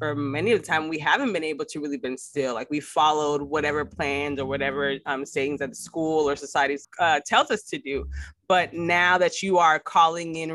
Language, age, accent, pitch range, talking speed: English, 20-39, American, 135-165 Hz, 220 wpm